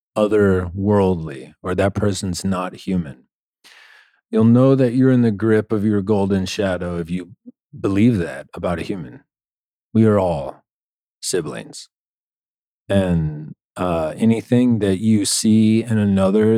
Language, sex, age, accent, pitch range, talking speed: English, male, 40-59, American, 90-110 Hz, 130 wpm